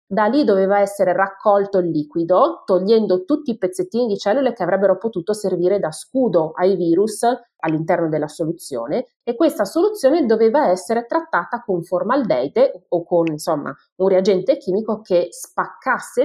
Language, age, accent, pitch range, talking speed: Italian, 30-49, native, 170-210 Hz, 150 wpm